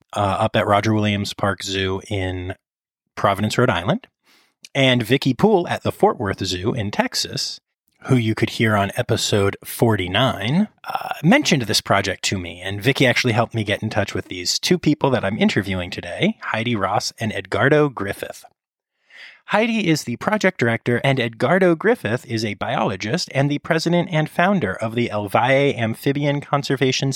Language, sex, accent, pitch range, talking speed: English, male, American, 100-140 Hz, 170 wpm